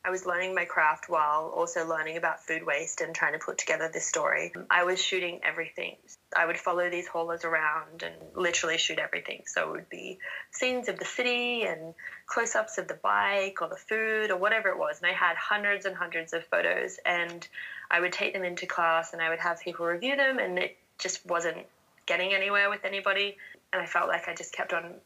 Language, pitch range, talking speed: English, 165-200 Hz, 215 wpm